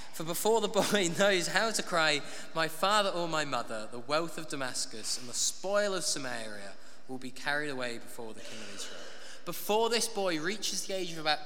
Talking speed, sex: 205 wpm, male